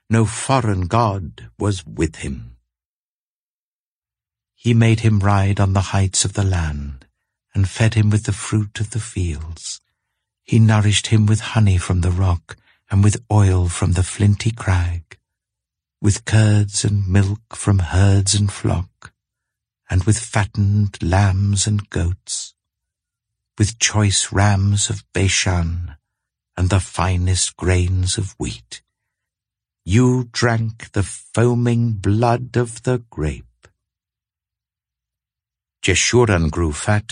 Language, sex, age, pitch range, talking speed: English, male, 60-79, 95-110 Hz, 125 wpm